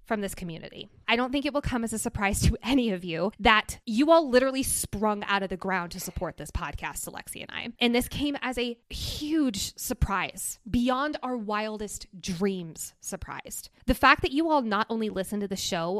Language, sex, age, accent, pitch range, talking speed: English, female, 20-39, American, 185-235 Hz, 205 wpm